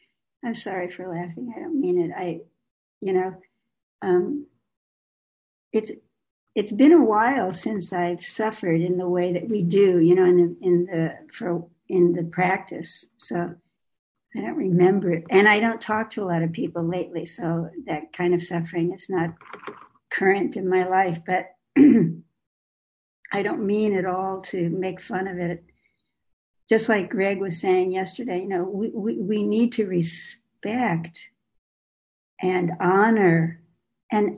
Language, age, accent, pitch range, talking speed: English, 60-79, American, 175-230 Hz, 155 wpm